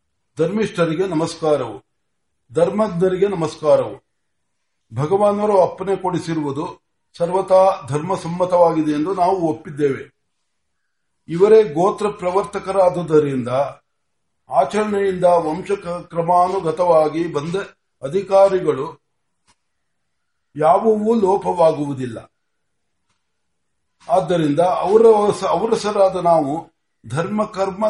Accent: native